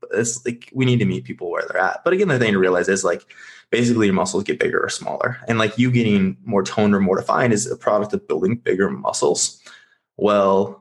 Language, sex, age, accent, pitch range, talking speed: English, male, 20-39, American, 100-125 Hz, 235 wpm